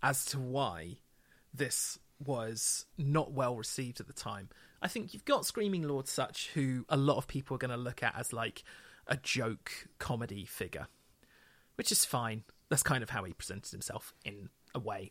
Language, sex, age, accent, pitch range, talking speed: English, male, 30-49, British, 120-145 Hz, 185 wpm